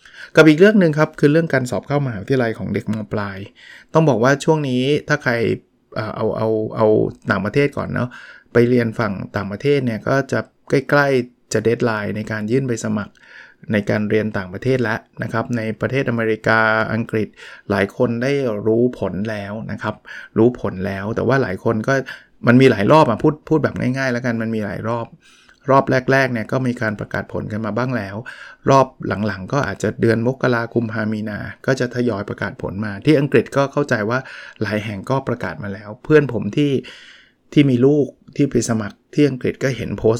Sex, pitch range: male, 110-135 Hz